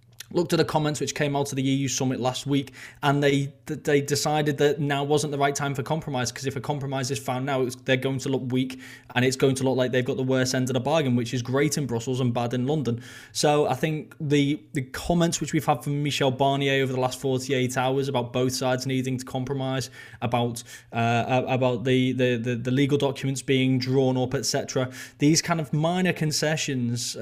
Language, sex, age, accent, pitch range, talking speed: English, male, 20-39, British, 125-140 Hz, 225 wpm